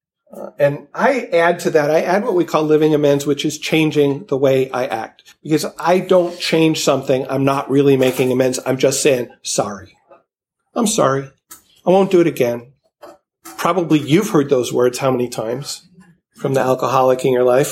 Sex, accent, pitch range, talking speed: male, American, 130-175 Hz, 185 wpm